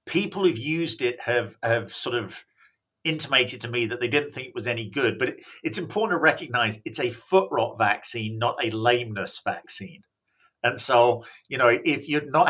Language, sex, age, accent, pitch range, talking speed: English, male, 50-69, British, 110-135 Hz, 190 wpm